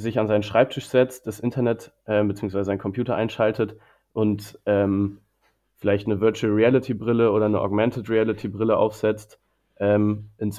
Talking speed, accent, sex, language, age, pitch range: 155 wpm, German, male, German, 20-39, 100-115 Hz